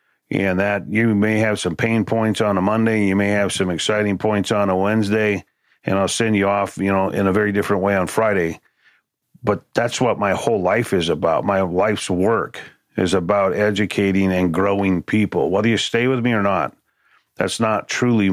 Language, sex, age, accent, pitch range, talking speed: English, male, 40-59, American, 95-110 Hz, 200 wpm